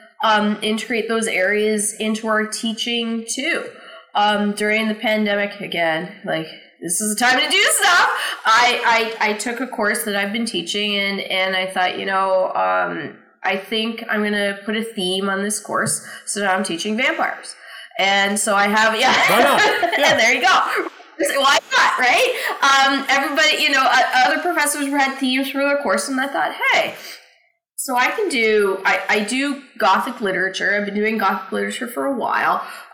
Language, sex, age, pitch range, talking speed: English, female, 20-39, 185-220 Hz, 180 wpm